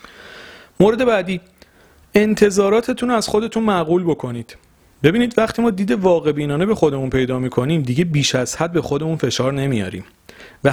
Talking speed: 145 wpm